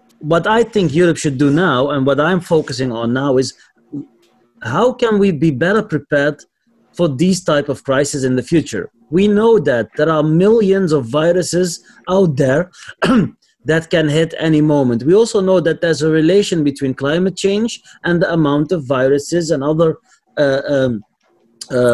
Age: 30-49